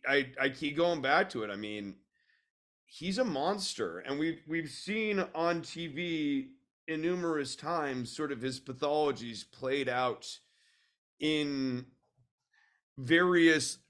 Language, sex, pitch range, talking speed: English, male, 135-180 Hz, 125 wpm